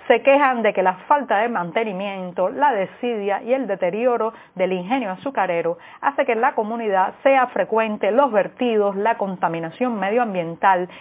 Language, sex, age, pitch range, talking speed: Spanish, female, 30-49, 190-250 Hz, 155 wpm